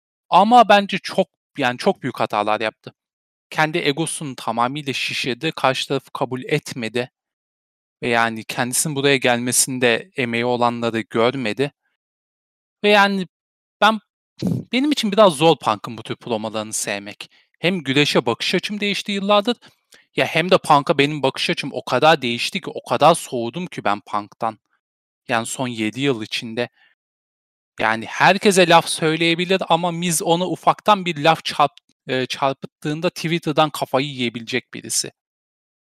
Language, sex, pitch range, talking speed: Turkish, male, 120-175 Hz, 135 wpm